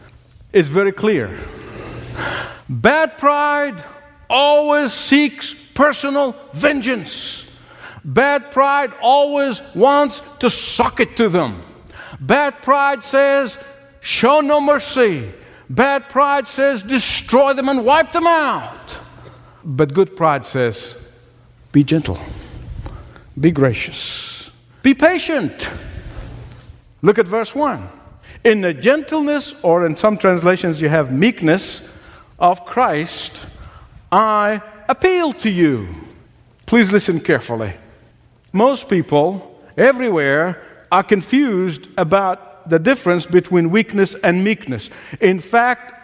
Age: 60-79